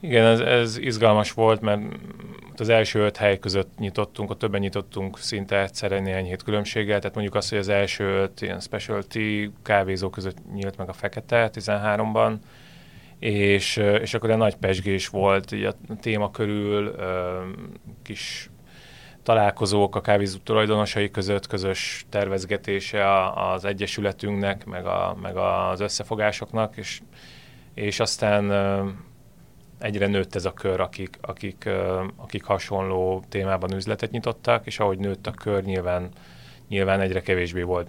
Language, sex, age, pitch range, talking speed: Hungarian, male, 30-49, 100-110 Hz, 135 wpm